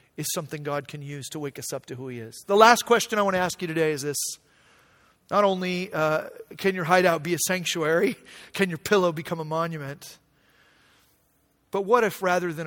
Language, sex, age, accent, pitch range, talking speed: English, male, 40-59, American, 150-195 Hz, 210 wpm